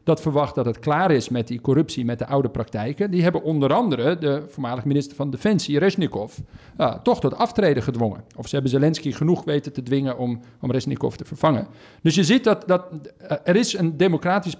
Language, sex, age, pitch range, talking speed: Dutch, male, 50-69, 130-175 Hz, 210 wpm